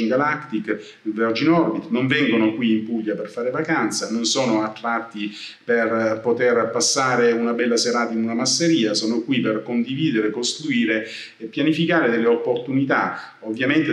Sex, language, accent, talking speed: male, Italian, native, 140 wpm